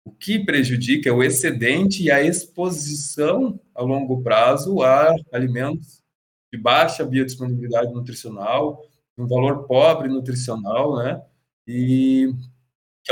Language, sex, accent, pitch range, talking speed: Portuguese, male, Brazilian, 125-150 Hz, 115 wpm